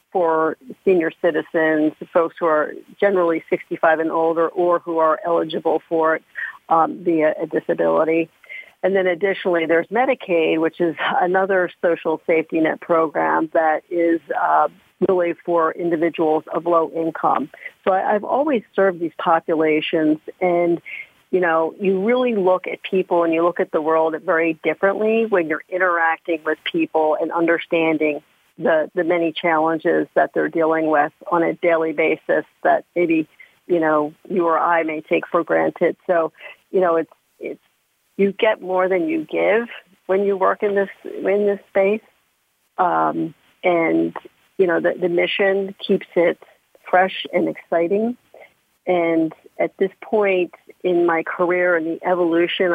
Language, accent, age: English, American, 50-69